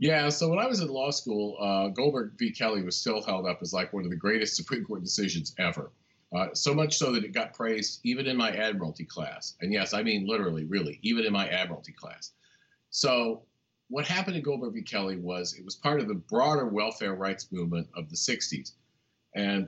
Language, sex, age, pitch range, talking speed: English, male, 40-59, 100-150 Hz, 215 wpm